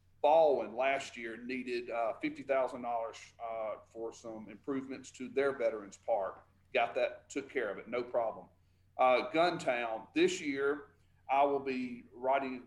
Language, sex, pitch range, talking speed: English, male, 115-140 Hz, 135 wpm